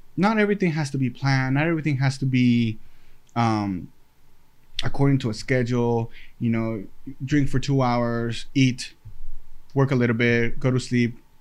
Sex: male